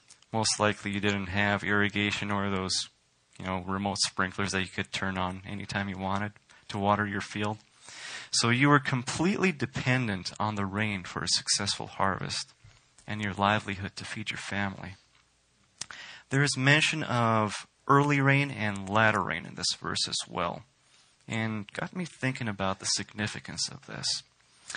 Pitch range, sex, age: 100-125 Hz, male, 30-49